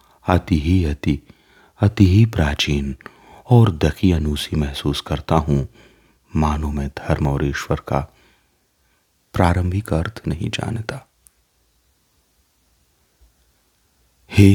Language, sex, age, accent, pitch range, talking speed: Hindi, male, 40-59, native, 70-95 Hz, 95 wpm